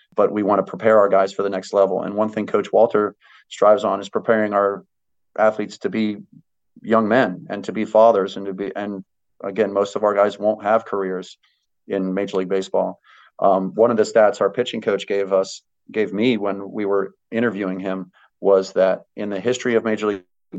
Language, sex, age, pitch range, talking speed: English, male, 30-49, 95-105 Hz, 205 wpm